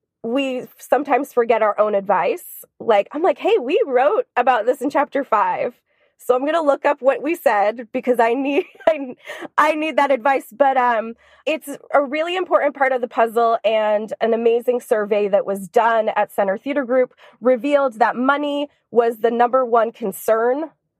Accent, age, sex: American, 20-39, female